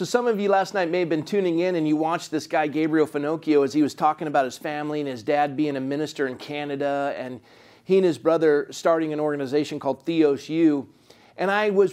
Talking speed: 235 wpm